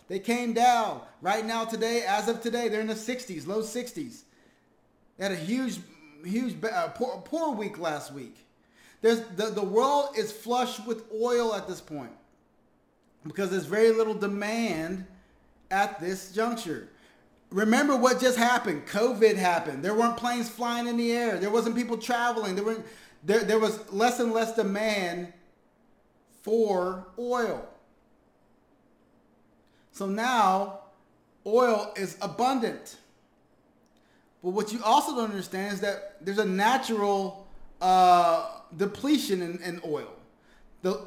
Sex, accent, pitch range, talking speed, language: male, American, 190-230 Hz, 135 wpm, English